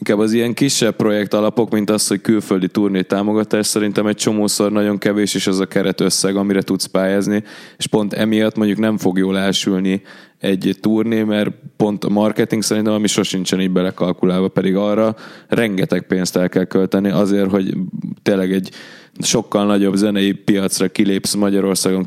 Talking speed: 165 wpm